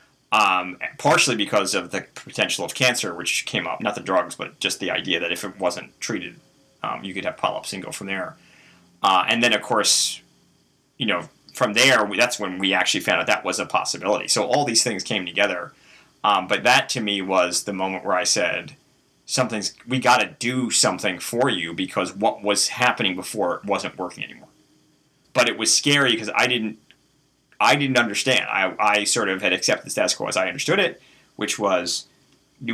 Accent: American